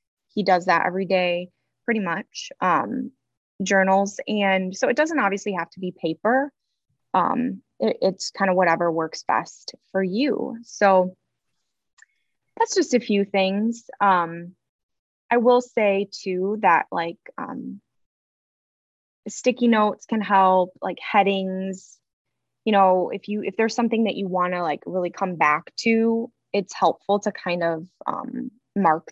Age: 20-39